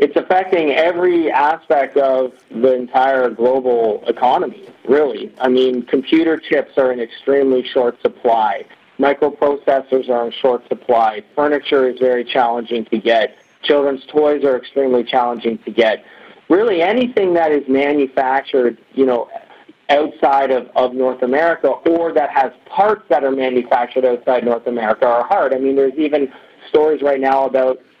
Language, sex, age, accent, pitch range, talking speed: English, male, 40-59, American, 130-150 Hz, 150 wpm